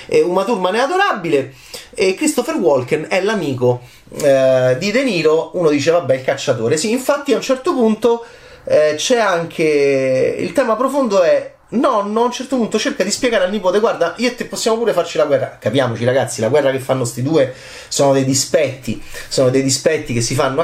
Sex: male